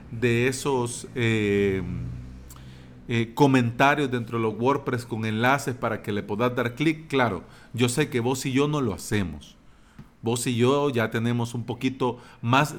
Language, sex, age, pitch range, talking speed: Spanish, male, 40-59, 120-145 Hz, 165 wpm